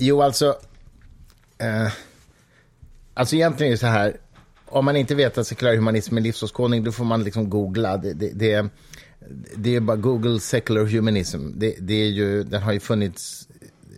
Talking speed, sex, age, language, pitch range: 175 wpm, male, 30-49, Swedish, 100-120 Hz